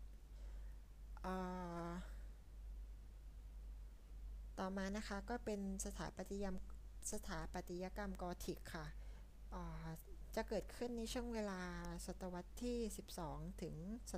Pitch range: 170-210 Hz